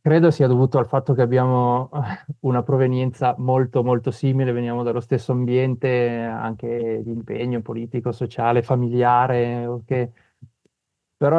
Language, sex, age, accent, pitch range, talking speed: Italian, male, 30-49, native, 115-130 Hz, 120 wpm